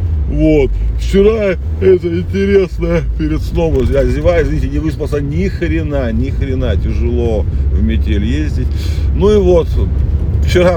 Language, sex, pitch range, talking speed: Russian, male, 80-105 Hz, 125 wpm